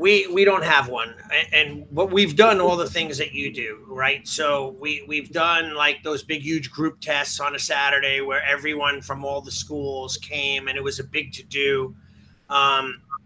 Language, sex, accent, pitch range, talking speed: English, male, American, 140-170 Hz, 200 wpm